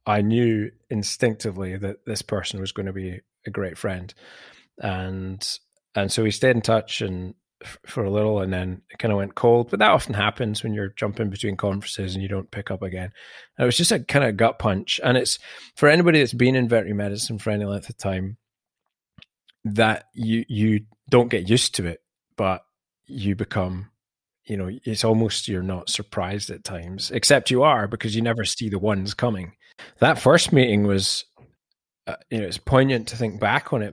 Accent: British